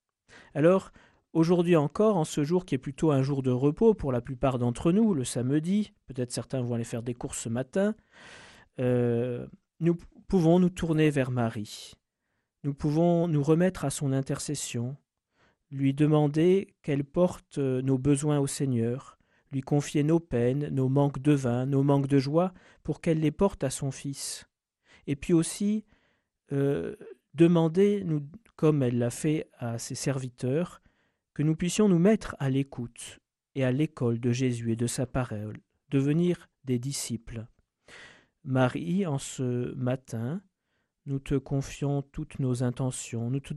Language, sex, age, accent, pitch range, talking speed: French, male, 40-59, French, 130-165 Hz, 155 wpm